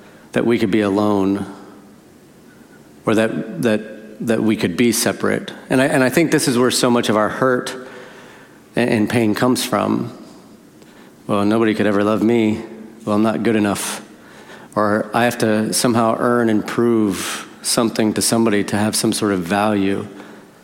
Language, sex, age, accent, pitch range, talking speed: English, male, 40-59, American, 105-120 Hz, 170 wpm